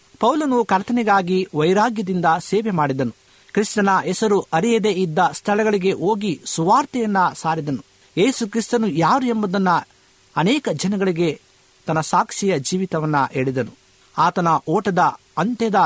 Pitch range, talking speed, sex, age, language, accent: 150-210 Hz, 95 wpm, male, 50-69, Kannada, native